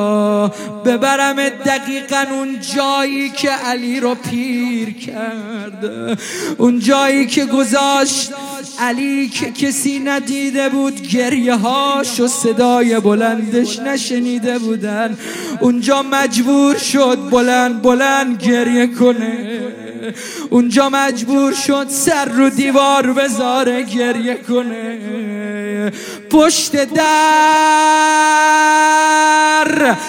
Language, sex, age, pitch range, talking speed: Arabic, male, 30-49, 245-310 Hz, 85 wpm